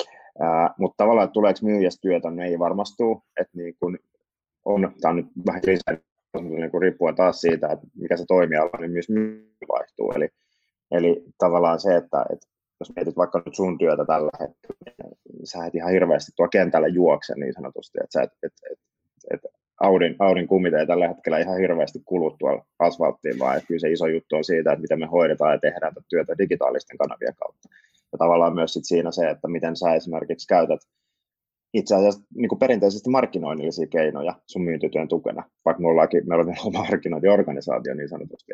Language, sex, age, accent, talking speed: Finnish, male, 20-39, native, 175 wpm